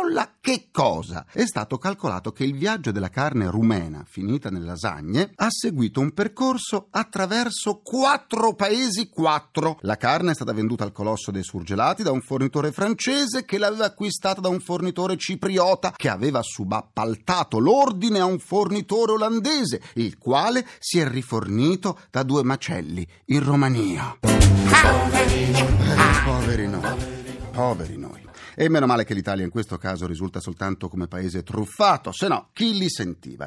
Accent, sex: native, male